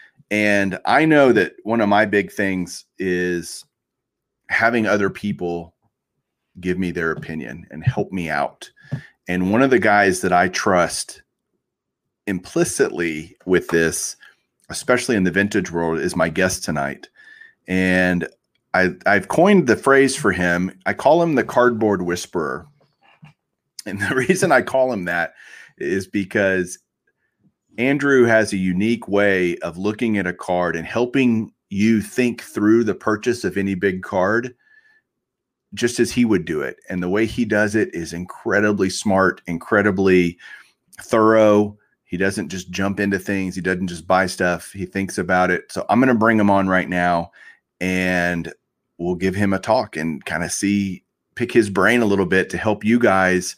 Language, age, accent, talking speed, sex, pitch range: English, 30-49, American, 160 wpm, male, 90-110 Hz